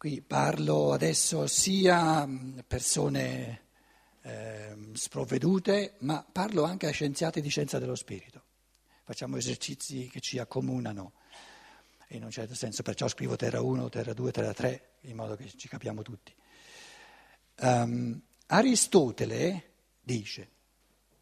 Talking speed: 115 wpm